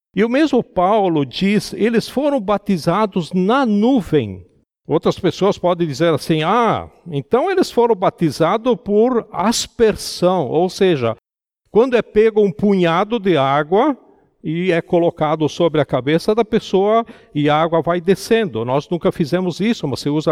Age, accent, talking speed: 50-69, Brazilian, 150 wpm